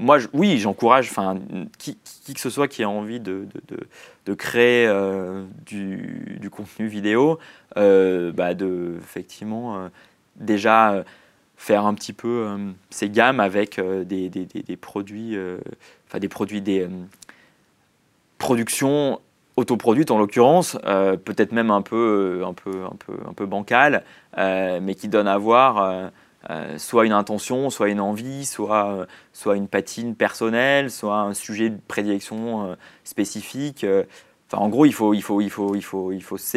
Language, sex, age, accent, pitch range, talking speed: French, male, 20-39, French, 95-115 Hz, 175 wpm